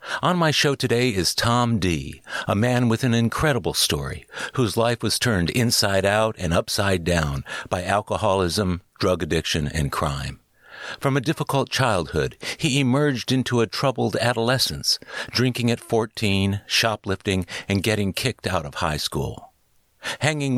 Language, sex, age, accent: English, male, 60-79, American